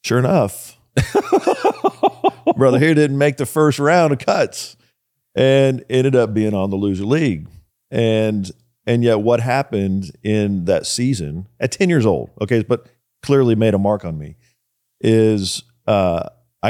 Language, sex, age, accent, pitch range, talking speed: English, male, 50-69, American, 95-120 Hz, 145 wpm